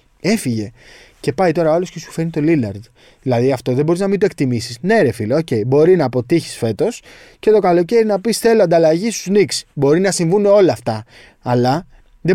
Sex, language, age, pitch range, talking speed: male, Greek, 20-39, 120-180 Hz, 210 wpm